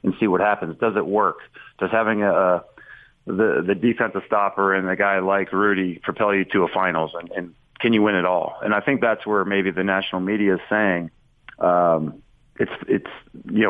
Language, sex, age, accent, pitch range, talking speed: English, male, 40-59, American, 95-115 Hz, 205 wpm